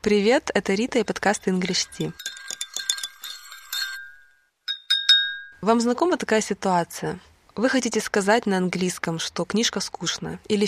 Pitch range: 180-225 Hz